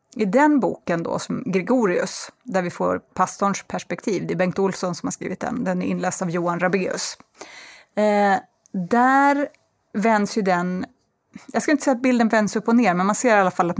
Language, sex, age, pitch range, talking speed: English, female, 30-49, 185-235 Hz, 205 wpm